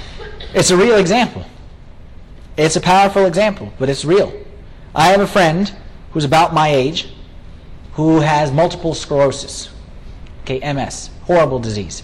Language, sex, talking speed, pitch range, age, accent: English, male, 135 wpm, 140-190 Hz, 30-49, American